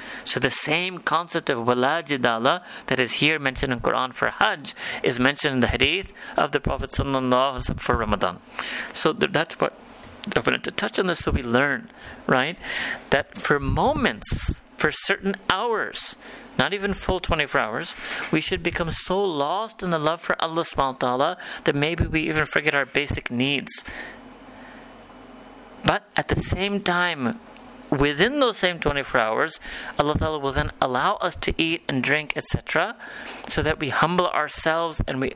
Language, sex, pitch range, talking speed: English, male, 135-180 Hz, 160 wpm